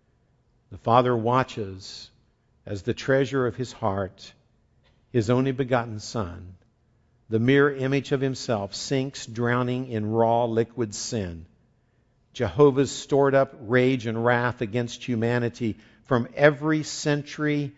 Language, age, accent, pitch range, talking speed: English, 60-79, American, 110-130 Hz, 120 wpm